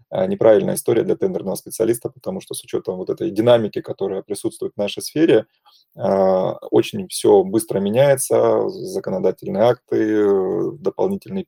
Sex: male